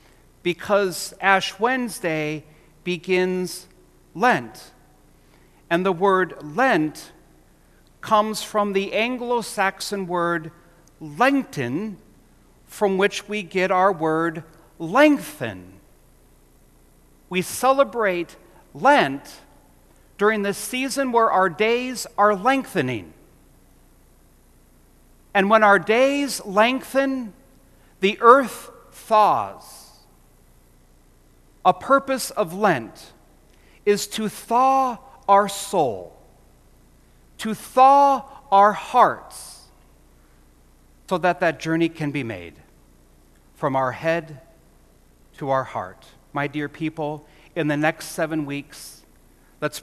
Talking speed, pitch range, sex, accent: 90 wpm, 140-210 Hz, male, American